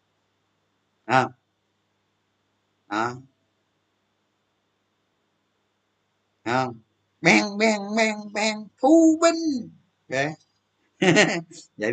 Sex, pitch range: male, 100-150 Hz